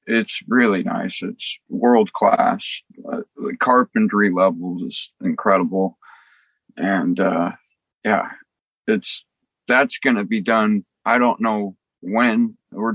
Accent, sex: American, male